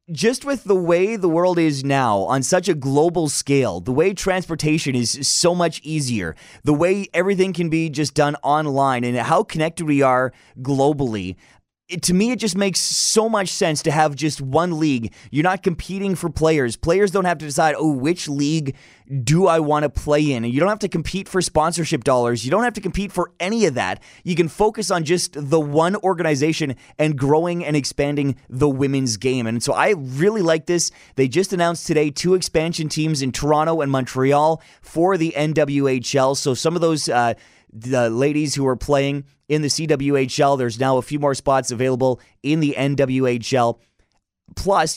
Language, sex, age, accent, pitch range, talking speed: English, male, 20-39, American, 135-165 Hz, 190 wpm